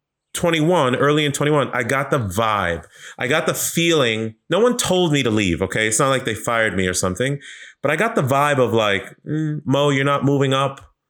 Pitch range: 110-140 Hz